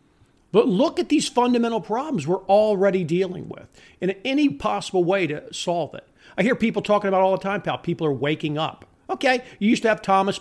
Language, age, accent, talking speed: English, 50-69, American, 210 wpm